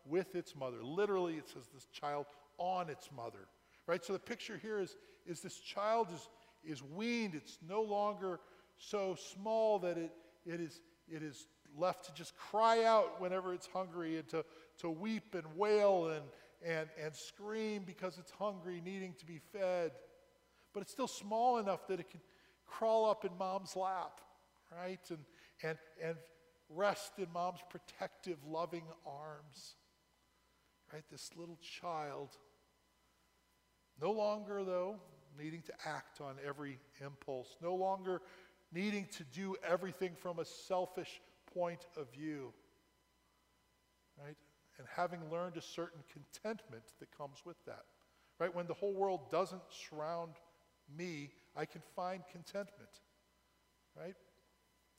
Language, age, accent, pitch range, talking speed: English, 50-69, American, 155-195 Hz, 145 wpm